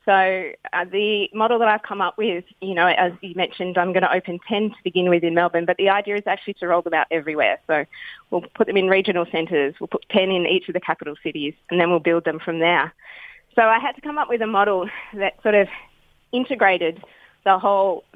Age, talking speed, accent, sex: 20-39, 240 wpm, Australian, female